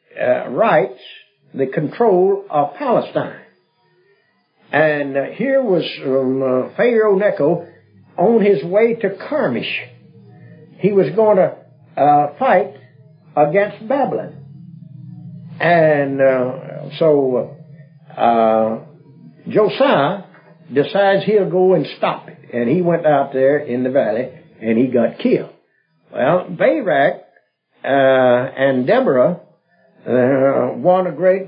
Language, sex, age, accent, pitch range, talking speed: English, male, 60-79, American, 135-185 Hz, 110 wpm